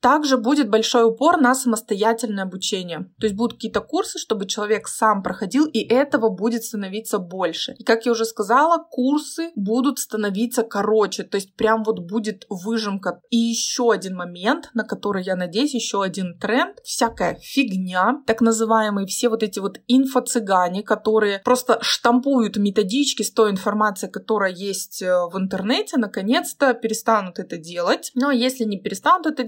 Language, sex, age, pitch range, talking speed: Russian, female, 20-39, 205-250 Hz, 155 wpm